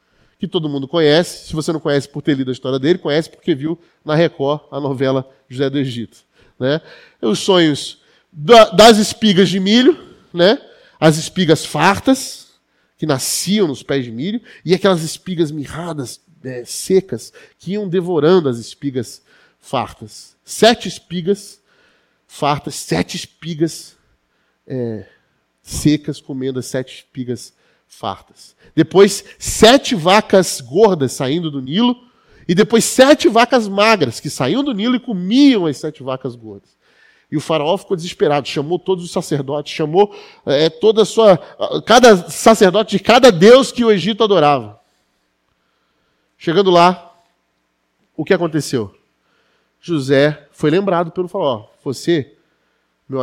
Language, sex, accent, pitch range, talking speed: Portuguese, male, Brazilian, 140-200 Hz, 135 wpm